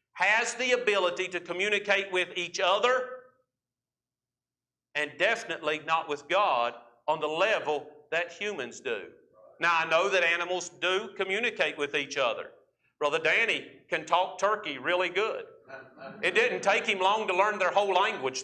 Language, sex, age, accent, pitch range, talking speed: English, male, 50-69, American, 185-255 Hz, 150 wpm